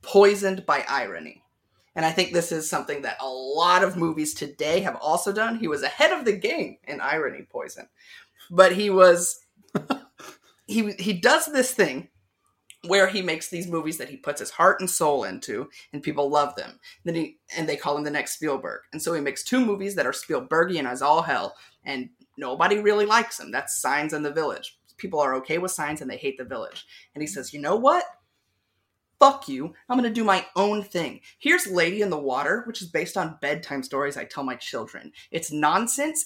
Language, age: English, 30-49